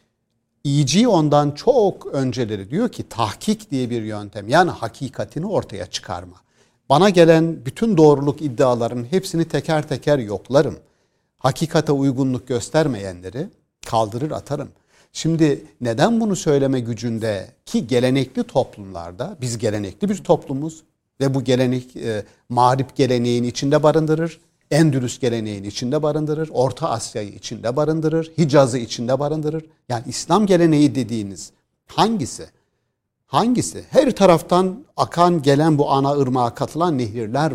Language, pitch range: Turkish, 115-160 Hz